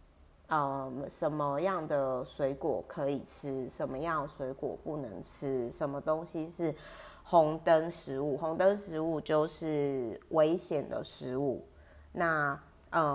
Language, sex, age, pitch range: Chinese, female, 30-49, 140-180 Hz